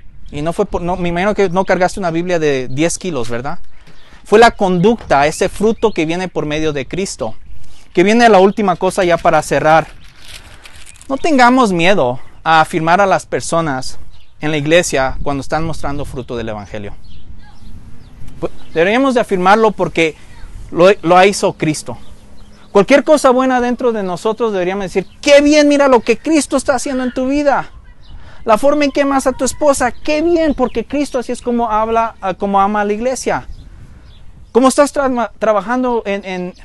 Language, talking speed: Spanish, 170 wpm